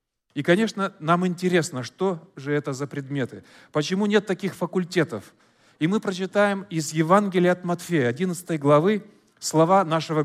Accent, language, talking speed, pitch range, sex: native, Russian, 140 wpm, 140-190 Hz, male